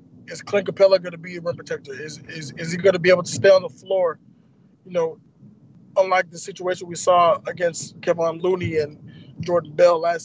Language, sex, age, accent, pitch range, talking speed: English, male, 20-39, American, 155-185 Hz, 210 wpm